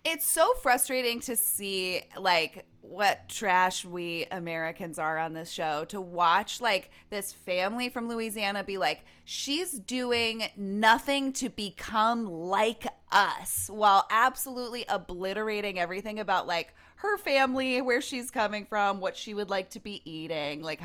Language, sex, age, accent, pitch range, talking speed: English, female, 20-39, American, 185-255 Hz, 145 wpm